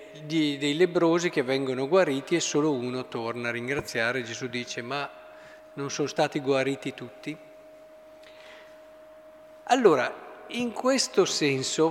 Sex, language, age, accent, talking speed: male, Italian, 50-69, native, 115 wpm